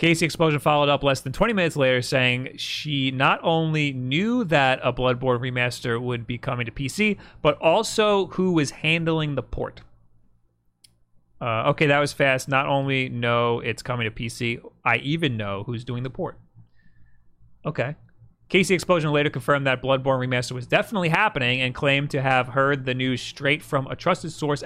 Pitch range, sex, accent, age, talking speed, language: 125-155 Hz, male, American, 30-49, 175 wpm, English